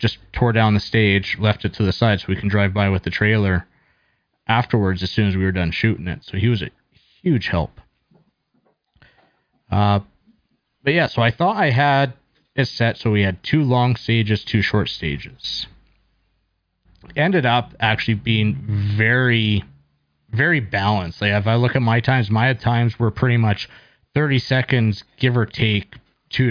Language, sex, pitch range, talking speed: English, male, 100-120 Hz, 175 wpm